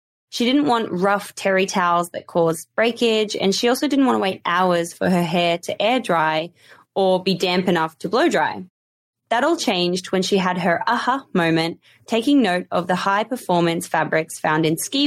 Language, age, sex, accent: English, 20-39, female, Australian